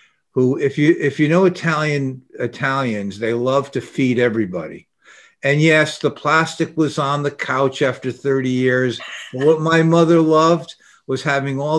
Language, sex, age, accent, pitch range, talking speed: English, male, 50-69, American, 120-145 Hz, 160 wpm